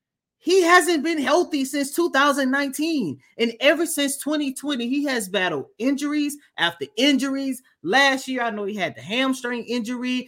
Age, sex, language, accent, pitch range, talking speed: 30-49, male, English, American, 190-255 Hz, 145 wpm